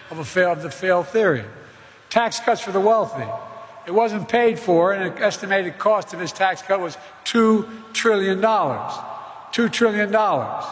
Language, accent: English, American